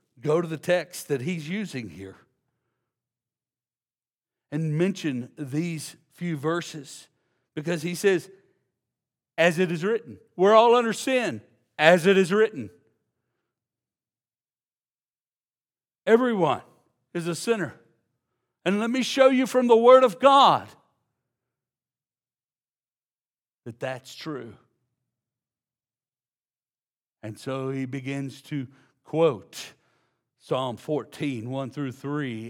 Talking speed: 105 wpm